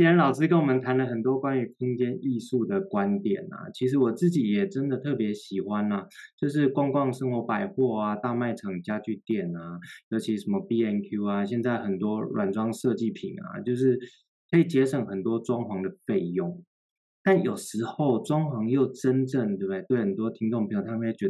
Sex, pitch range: male, 110-165 Hz